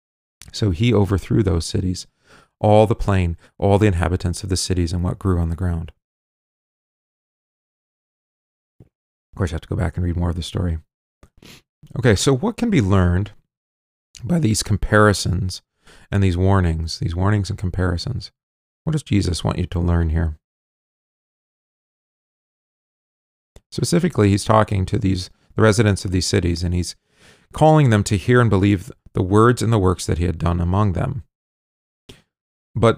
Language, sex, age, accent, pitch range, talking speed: English, male, 40-59, American, 90-105 Hz, 160 wpm